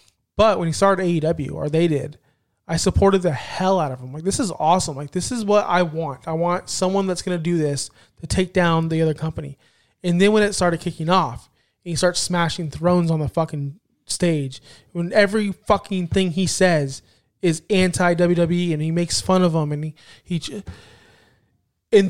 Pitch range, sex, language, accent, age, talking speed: 160-200 Hz, male, English, American, 20-39, 200 wpm